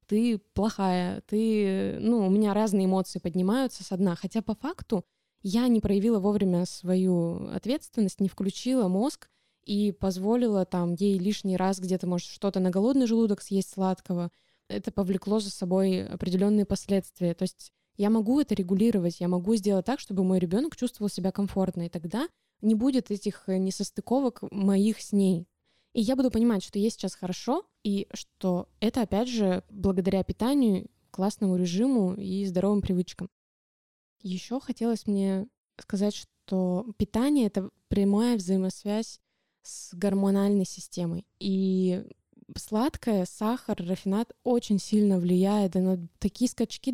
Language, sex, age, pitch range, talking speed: Russian, female, 20-39, 190-220 Hz, 140 wpm